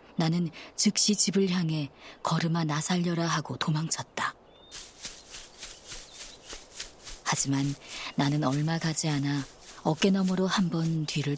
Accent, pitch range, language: native, 140-175 Hz, Korean